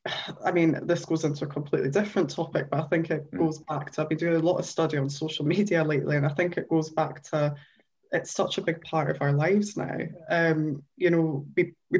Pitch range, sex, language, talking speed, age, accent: 155-175 Hz, female, English, 240 wpm, 20-39, British